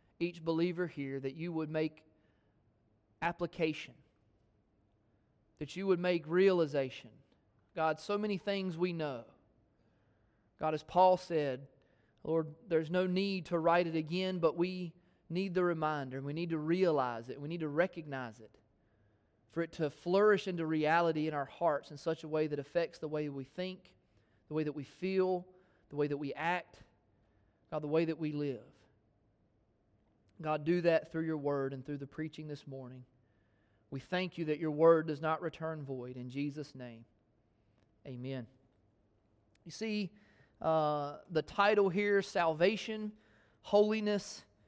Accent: American